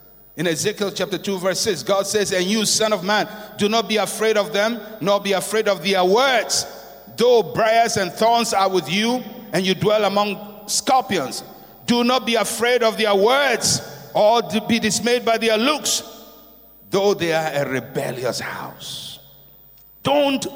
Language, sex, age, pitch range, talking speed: English, male, 60-79, 135-215 Hz, 165 wpm